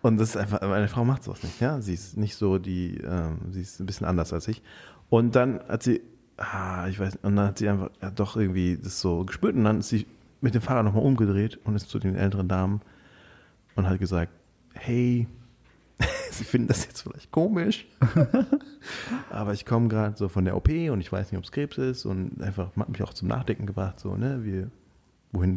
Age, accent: 30-49, German